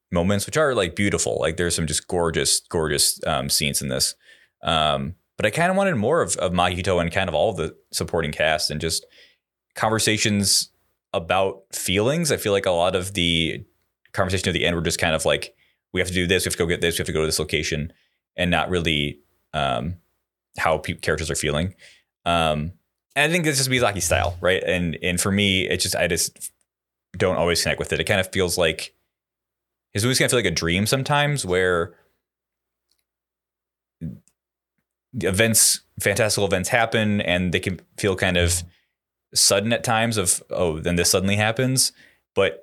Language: English